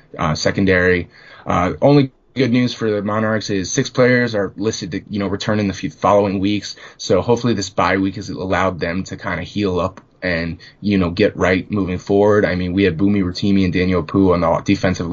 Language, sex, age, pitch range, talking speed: English, male, 20-39, 90-105 Hz, 215 wpm